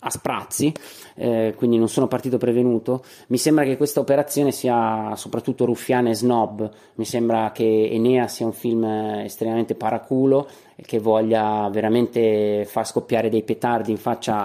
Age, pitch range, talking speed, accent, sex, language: 30-49, 110-125 Hz, 150 wpm, native, male, Italian